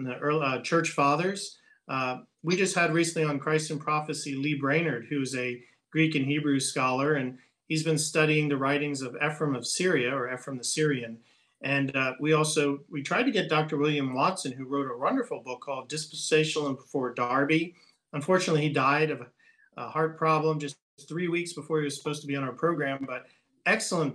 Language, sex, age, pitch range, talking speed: English, male, 40-59, 135-160 Hz, 190 wpm